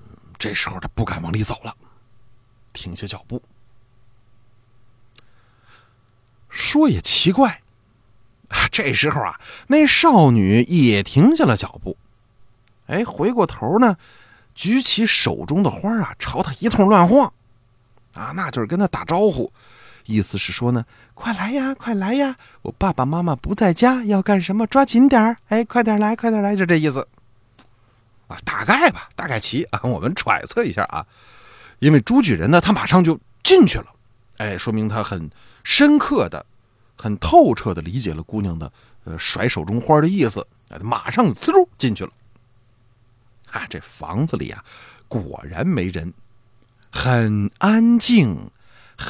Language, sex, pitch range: Chinese, male, 115-190 Hz